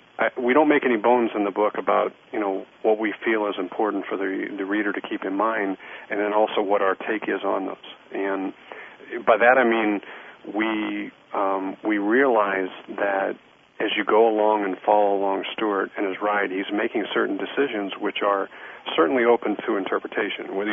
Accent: American